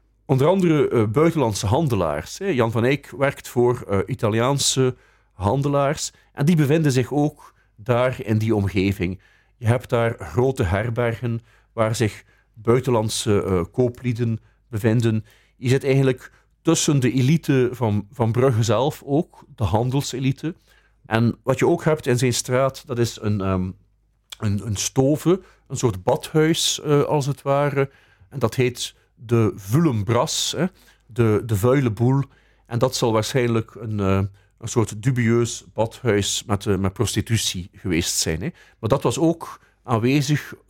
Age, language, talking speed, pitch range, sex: 50-69, Dutch, 140 wpm, 110-130 Hz, male